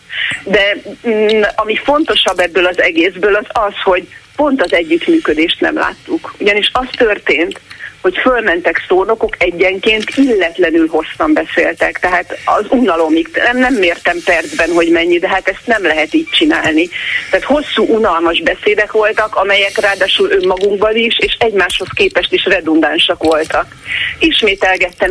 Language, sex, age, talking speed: Hungarian, female, 40-59, 130 wpm